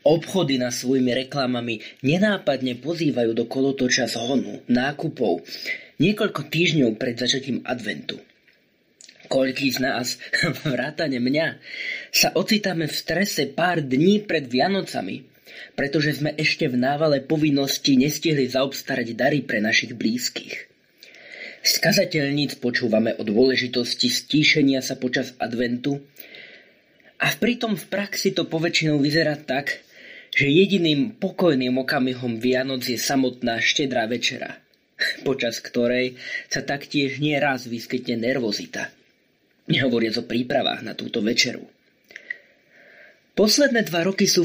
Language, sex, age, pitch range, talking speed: Slovak, male, 20-39, 125-165 Hz, 110 wpm